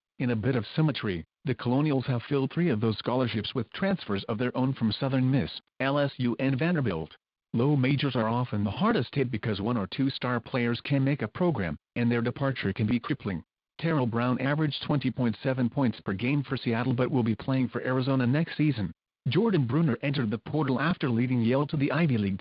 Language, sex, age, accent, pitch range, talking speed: English, male, 40-59, American, 115-140 Hz, 205 wpm